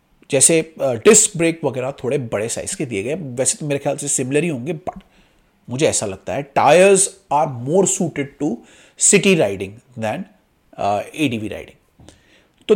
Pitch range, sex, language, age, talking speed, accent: 135-205 Hz, male, Hindi, 30-49, 160 wpm, native